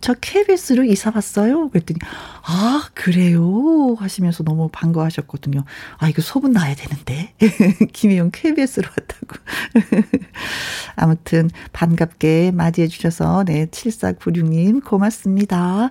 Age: 40-59